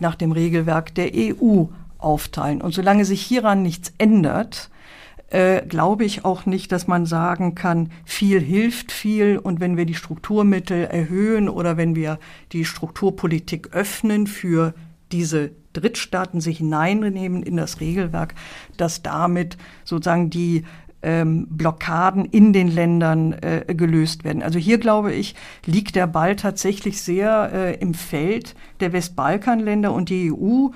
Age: 50-69